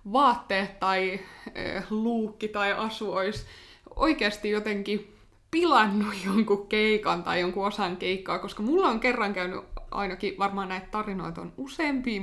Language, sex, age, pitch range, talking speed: Finnish, female, 20-39, 190-245 Hz, 135 wpm